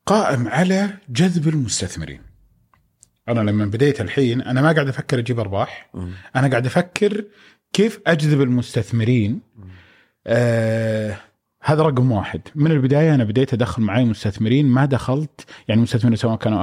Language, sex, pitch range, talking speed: Arabic, male, 110-150 Hz, 135 wpm